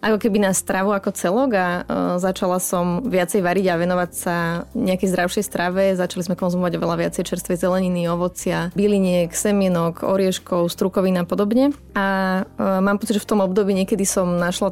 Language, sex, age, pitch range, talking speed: Slovak, female, 20-39, 180-200 Hz, 175 wpm